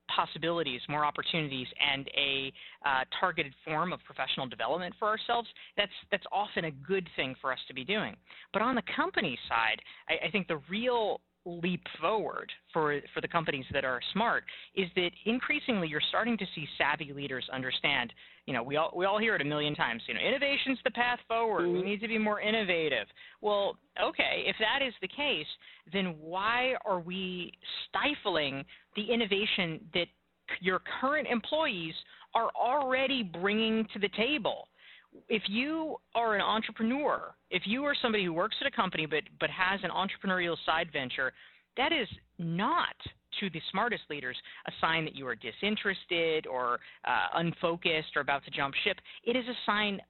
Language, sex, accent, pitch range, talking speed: English, female, American, 160-215 Hz, 175 wpm